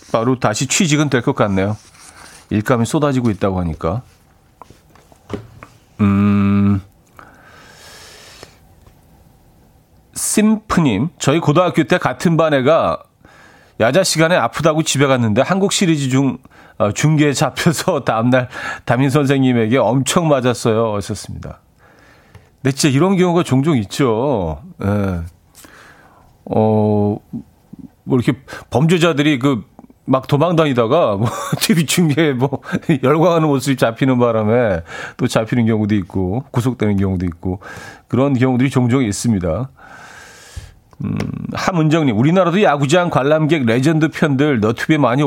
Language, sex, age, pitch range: Korean, male, 40-59, 105-150 Hz